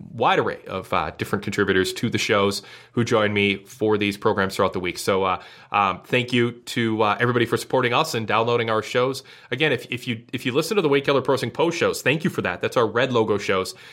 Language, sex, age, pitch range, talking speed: English, male, 30-49, 105-130 Hz, 245 wpm